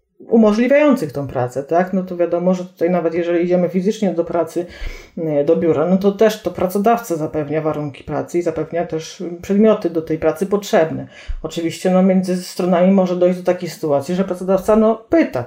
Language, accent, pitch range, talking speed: Polish, native, 170-220 Hz, 180 wpm